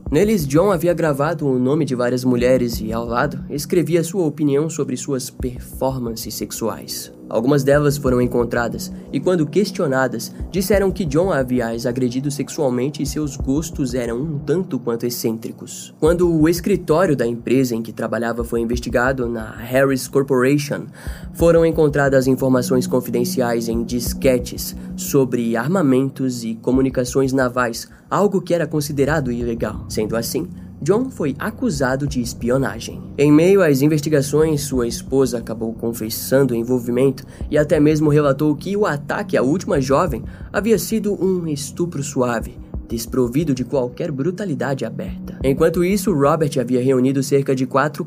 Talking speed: 140 wpm